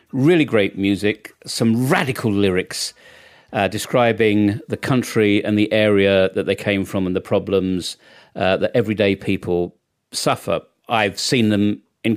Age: 40-59